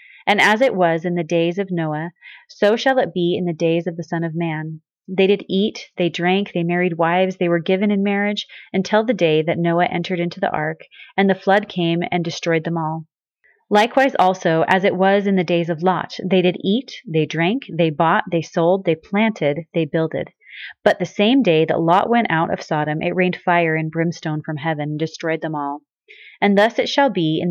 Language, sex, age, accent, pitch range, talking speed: English, female, 30-49, American, 165-205 Hz, 220 wpm